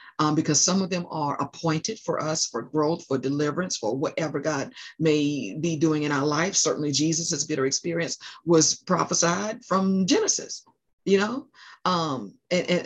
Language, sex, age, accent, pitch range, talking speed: English, female, 50-69, American, 145-180 Hz, 165 wpm